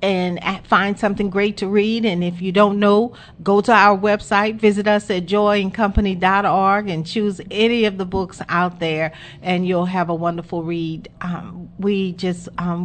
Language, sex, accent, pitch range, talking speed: English, female, American, 175-210 Hz, 175 wpm